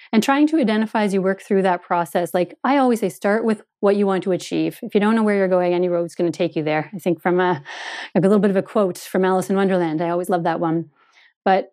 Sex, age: female, 30-49